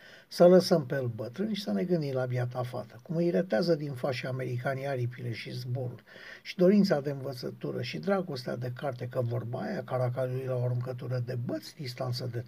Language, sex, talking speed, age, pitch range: Romanian, male, 190 wpm, 60-79, 130-180 Hz